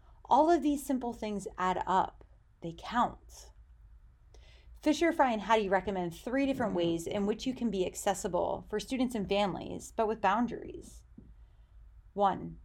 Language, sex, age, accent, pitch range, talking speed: English, female, 30-49, American, 190-255 Hz, 145 wpm